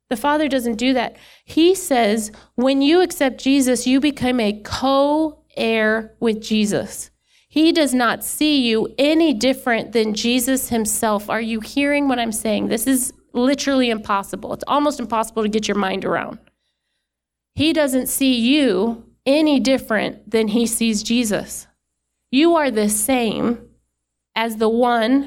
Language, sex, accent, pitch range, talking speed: English, female, American, 215-275 Hz, 145 wpm